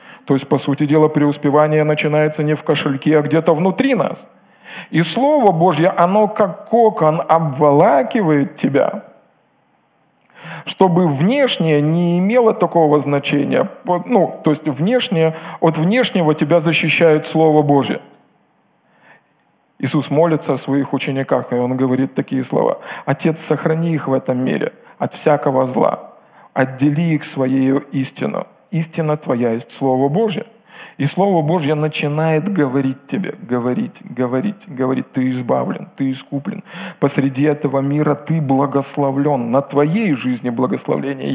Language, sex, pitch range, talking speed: Russian, male, 140-170 Hz, 130 wpm